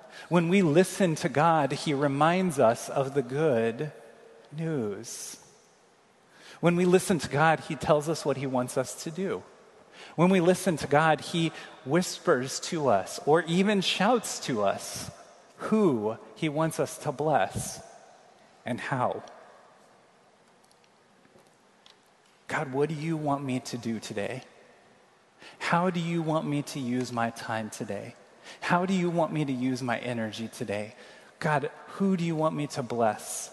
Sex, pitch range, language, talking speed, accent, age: male, 130-170 Hz, English, 150 wpm, American, 30-49